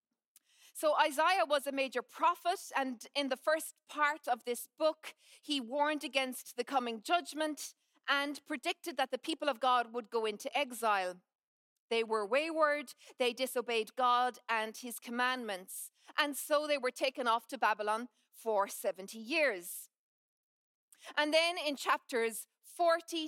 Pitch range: 225-295 Hz